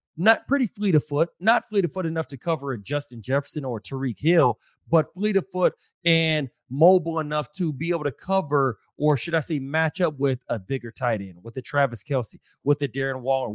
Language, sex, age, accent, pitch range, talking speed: English, male, 30-49, American, 135-165 Hz, 215 wpm